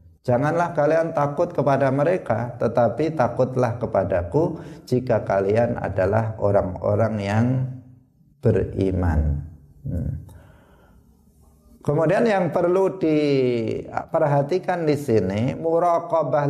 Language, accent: Indonesian, native